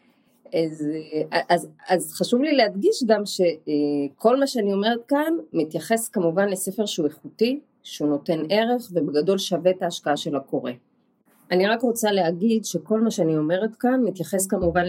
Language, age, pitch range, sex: Hebrew, 30-49, 165-230 Hz, female